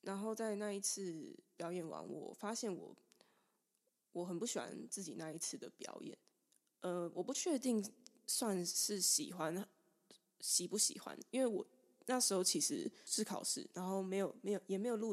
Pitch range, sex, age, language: 175-215 Hz, female, 20-39, Chinese